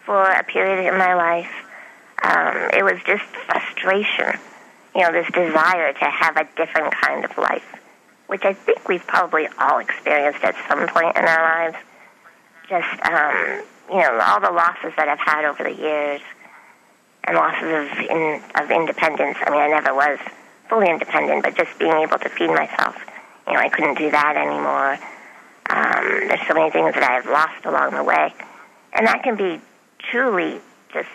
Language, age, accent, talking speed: English, 40-59, American, 175 wpm